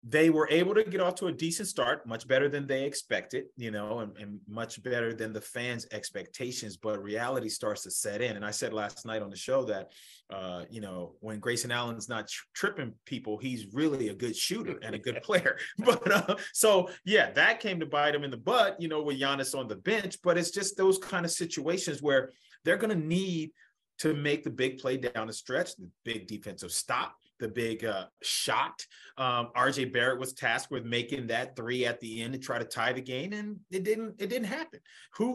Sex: male